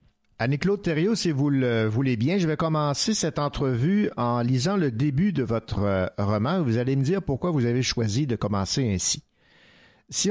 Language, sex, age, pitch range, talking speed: French, male, 50-69, 115-155 Hz, 180 wpm